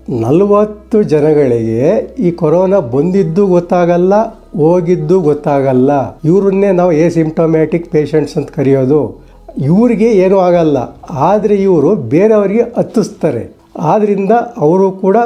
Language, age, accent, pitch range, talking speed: Kannada, 60-79, native, 145-185 Hz, 100 wpm